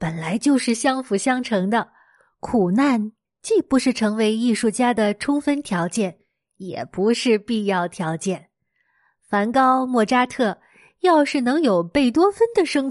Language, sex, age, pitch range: Chinese, female, 20-39, 210-280 Hz